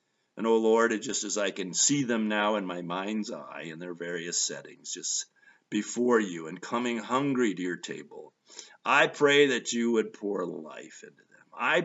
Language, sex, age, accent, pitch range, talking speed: English, male, 50-69, American, 105-145 Hz, 200 wpm